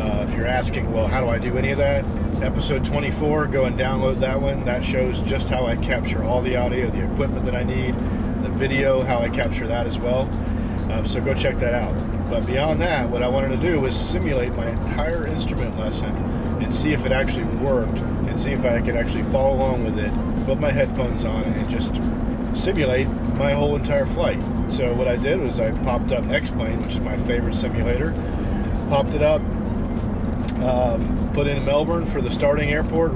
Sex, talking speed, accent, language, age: male, 205 wpm, American, English, 40-59